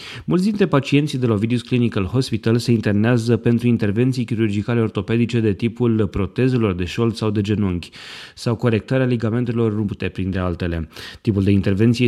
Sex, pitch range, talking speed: male, 105-125 Hz, 155 wpm